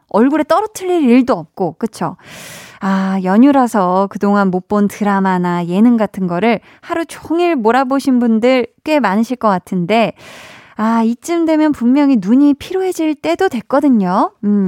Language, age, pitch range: Korean, 20-39, 200-285 Hz